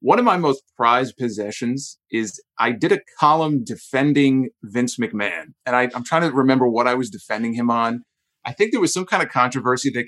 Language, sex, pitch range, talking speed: English, male, 115-140 Hz, 200 wpm